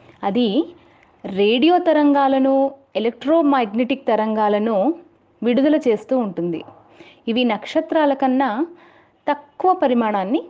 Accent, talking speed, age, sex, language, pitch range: native, 75 wpm, 30-49, female, Telugu, 220-300 Hz